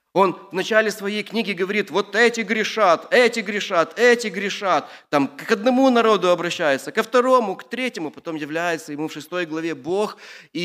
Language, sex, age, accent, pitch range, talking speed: Russian, male, 30-49, native, 180-255 Hz, 170 wpm